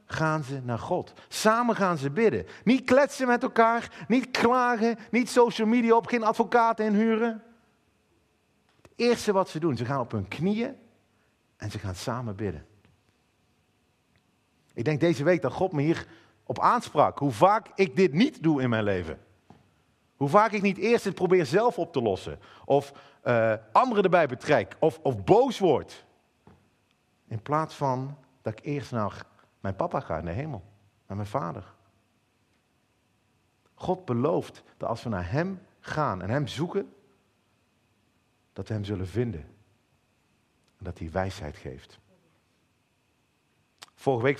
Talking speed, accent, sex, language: 155 wpm, Dutch, male, Dutch